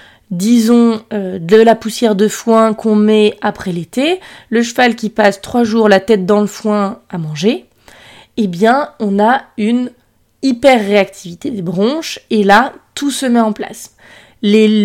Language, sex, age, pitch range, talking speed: French, female, 20-39, 200-245 Hz, 160 wpm